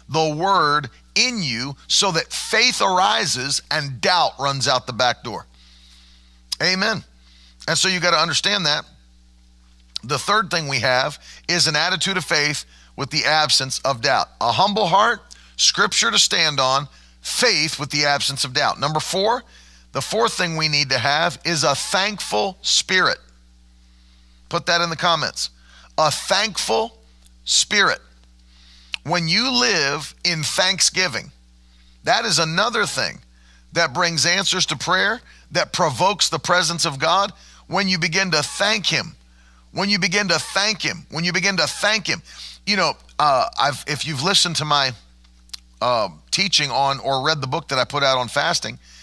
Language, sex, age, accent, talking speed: English, male, 40-59, American, 160 wpm